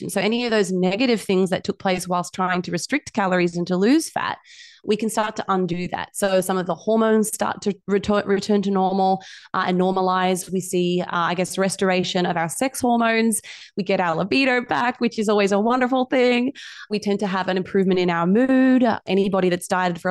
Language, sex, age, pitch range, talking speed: English, female, 20-39, 185-215 Hz, 215 wpm